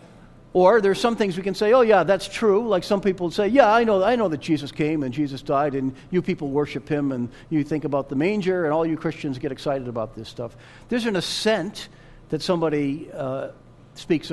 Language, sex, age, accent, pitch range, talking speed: English, male, 50-69, American, 135-175 Hz, 220 wpm